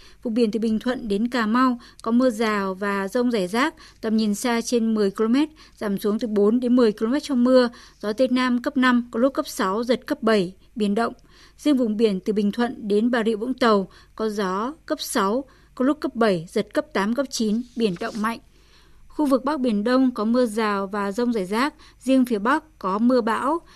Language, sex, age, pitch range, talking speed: Vietnamese, female, 20-39, 220-265 Hz, 220 wpm